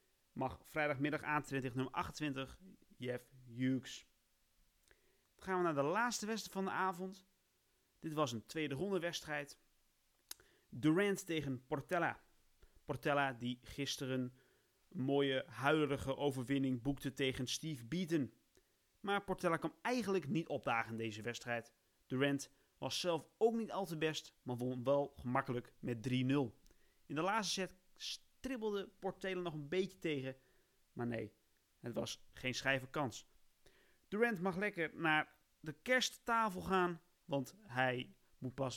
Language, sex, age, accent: Dutch, male, 30-49, Dutch